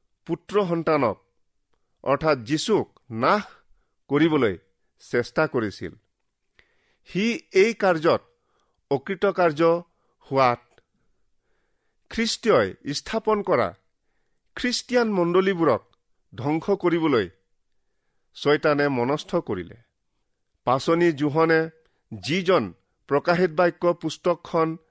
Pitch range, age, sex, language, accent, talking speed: 145-190 Hz, 50-69, male, English, Indian, 70 wpm